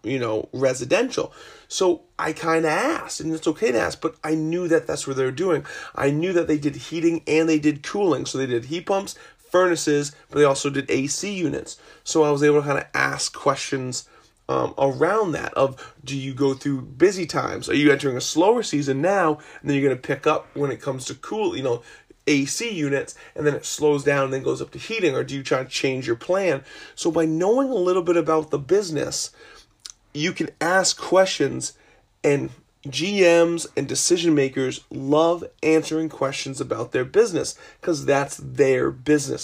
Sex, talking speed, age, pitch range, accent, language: male, 200 wpm, 30-49, 140-165 Hz, American, English